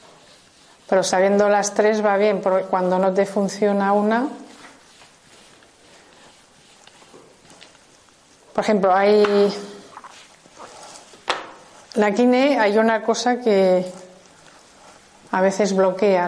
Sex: female